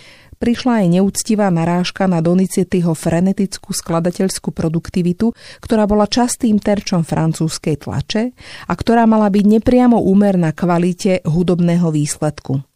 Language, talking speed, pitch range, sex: Slovak, 120 wpm, 165-210 Hz, female